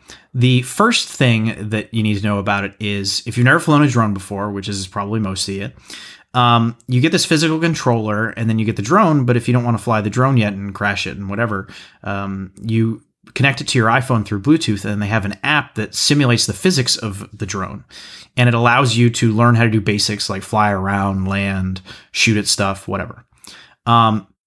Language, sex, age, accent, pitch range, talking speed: English, male, 30-49, American, 100-125 Hz, 225 wpm